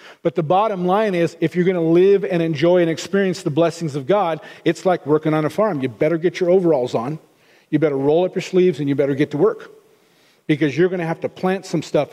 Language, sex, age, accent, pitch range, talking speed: English, male, 40-59, American, 160-200 Hz, 250 wpm